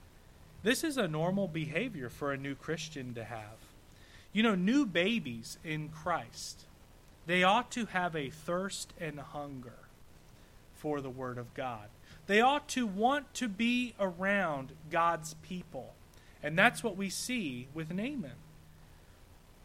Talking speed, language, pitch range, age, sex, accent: 140 wpm, English, 145-200 Hz, 30-49, male, American